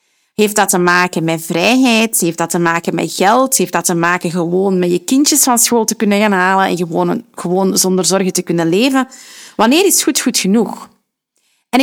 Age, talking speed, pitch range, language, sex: 30-49, 205 wpm, 185-240 Hz, Dutch, female